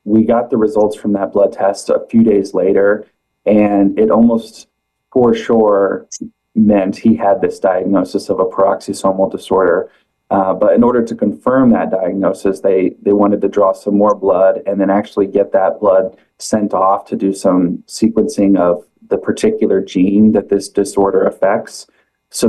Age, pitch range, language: 20-39, 95-105 Hz, English